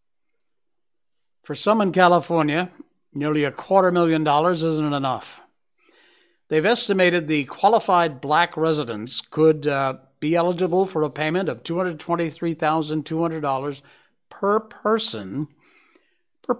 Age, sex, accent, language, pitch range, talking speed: 60-79, male, American, English, 145-200 Hz, 105 wpm